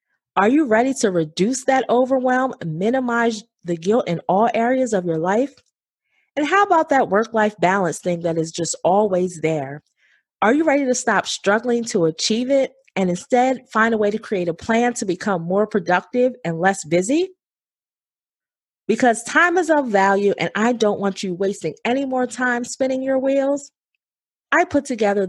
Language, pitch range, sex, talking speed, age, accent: English, 180-240 Hz, female, 175 wpm, 30-49, American